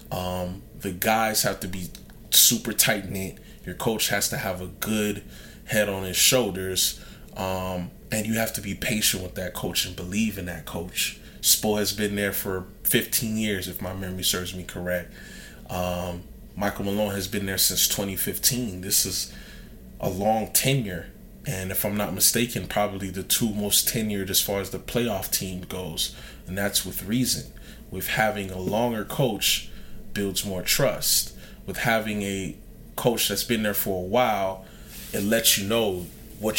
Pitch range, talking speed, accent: 95-110 Hz, 170 wpm, American